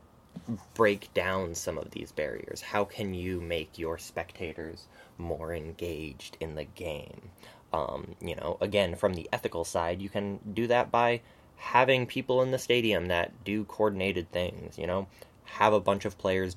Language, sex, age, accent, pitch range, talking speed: English, male, 10-29, American, 95-115 Hz, 165 wpm